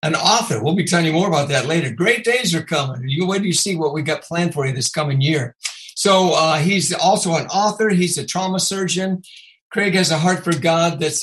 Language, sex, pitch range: English, male, 155-195 Hz